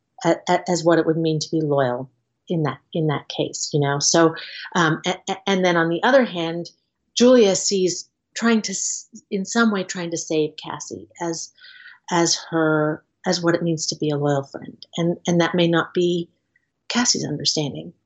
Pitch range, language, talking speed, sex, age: 170-215 Hz, English, 180 wpm, female, 40-59